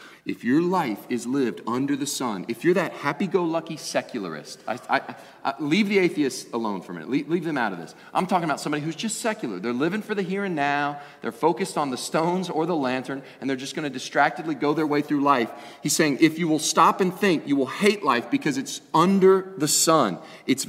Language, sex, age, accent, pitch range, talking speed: English, male, 30-49, American, 115-165 Hz, 225 wpm